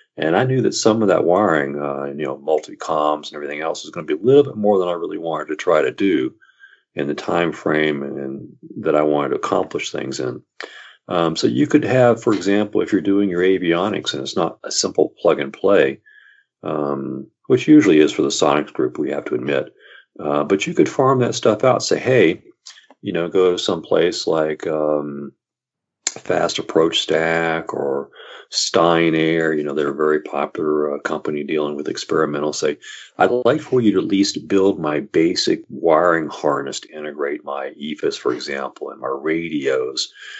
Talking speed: 200 wpm